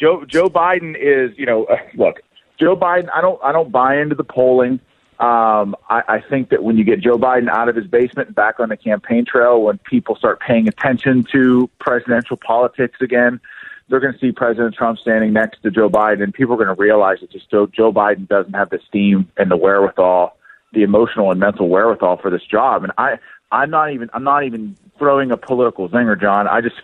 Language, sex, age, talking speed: English, male, 40-59, 220 wpm